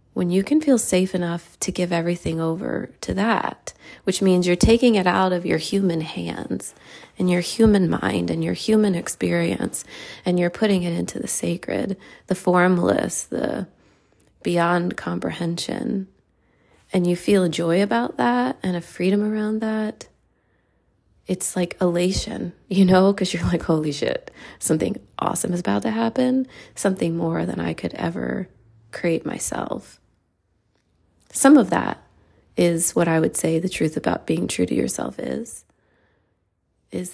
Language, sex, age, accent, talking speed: English, female, 30-49, American, 150 wpm